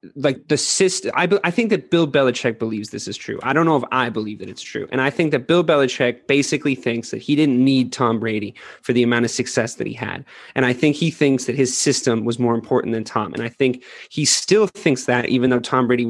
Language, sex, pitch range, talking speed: English, male, 120-140 Hz, 255 wpm